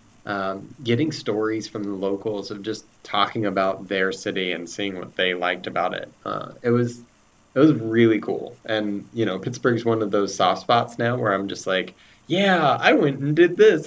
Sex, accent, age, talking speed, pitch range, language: male, American, 20-39, 200 wpm, 100-120 Hz, English